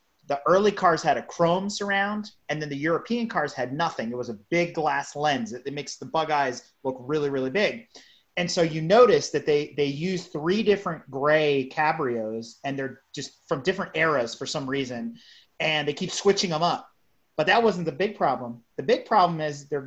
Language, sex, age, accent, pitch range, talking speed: English, male, 30-49, American, 150-215 Hz, 200 wpm